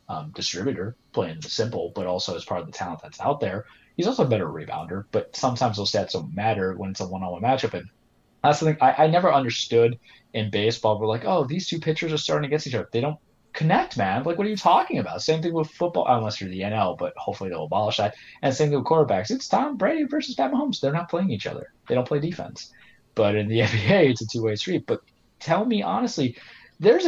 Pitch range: 105-145 Hz